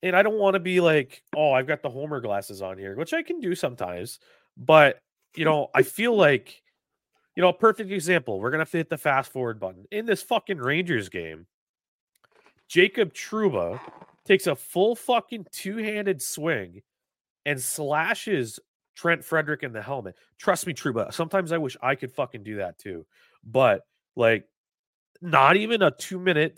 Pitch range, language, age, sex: 130-205 Hz, English, 30-49, male